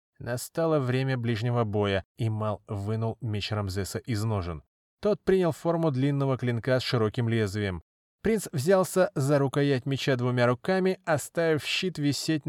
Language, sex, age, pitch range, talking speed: Russian, male, 20-39, 115-150 Hz, 140 wpm